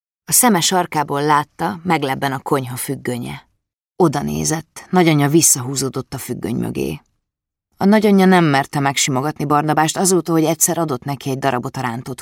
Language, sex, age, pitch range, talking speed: Hungarian, female, 30-49, 130-175 Hz, 145 wpm